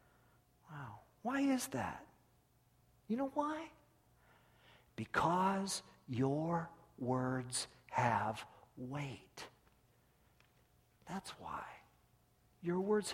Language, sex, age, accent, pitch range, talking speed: English, male, 50-69, American, 130-200 Hz, 75 wpm